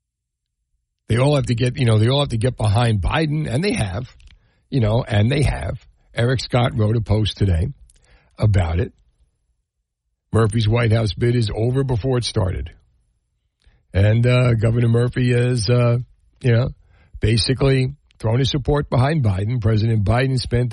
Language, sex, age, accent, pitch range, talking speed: English, male, 60-79, American, 100-135 Hz, 160 wpm